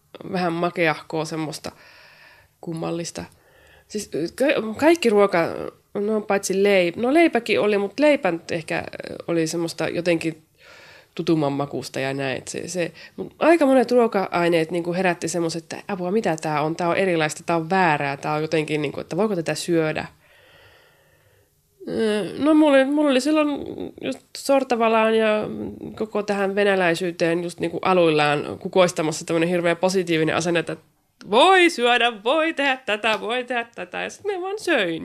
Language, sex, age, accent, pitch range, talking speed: Finnish, female, 20-39, native, 170-270 Hz, 145 wpm